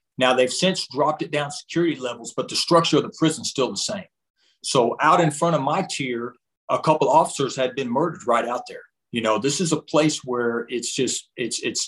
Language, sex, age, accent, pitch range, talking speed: English, male, 40-59, American, 125-165 Hz, 230 wpm